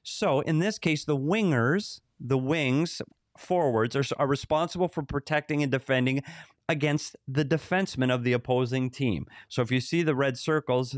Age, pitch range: 30-49, 120-155 Hz